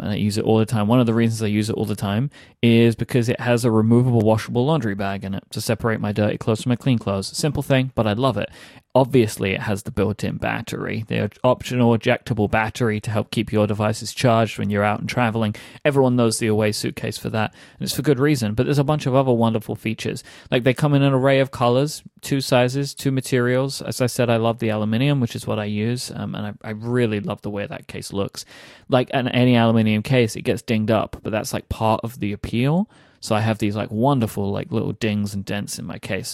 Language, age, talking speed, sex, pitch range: English, 30-49, 245 wpm, male, 105-125 Hz